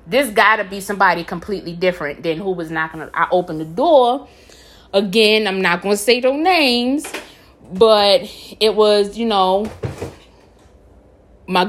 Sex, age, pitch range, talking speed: female, 20-39, 185-245 Hz, 155 wpm